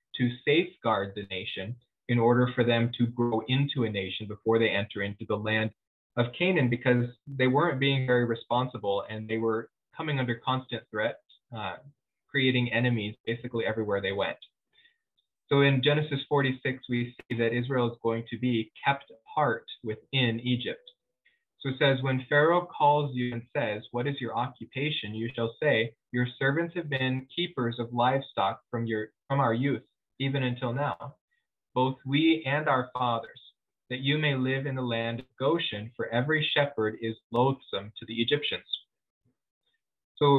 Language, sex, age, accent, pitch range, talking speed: English, male, 20-39, American, 115-140 Hz, 165 wpm